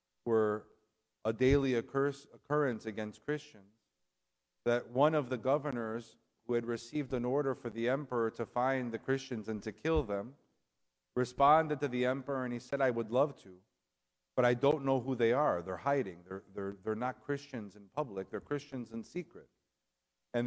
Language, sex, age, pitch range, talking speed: English, male, 50-69, 110-130 Hz, 170 wpm